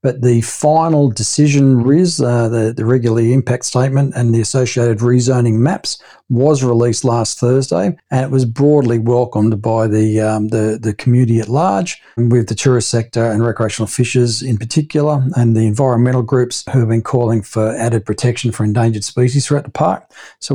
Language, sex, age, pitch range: English, male, 50-69, 120-145 Hz